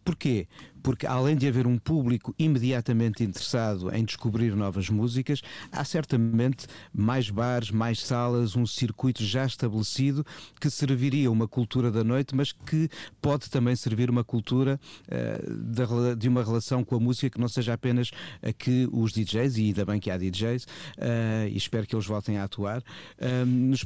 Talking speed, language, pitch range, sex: 170 wpm, Portuguese, 110-130 Hz, male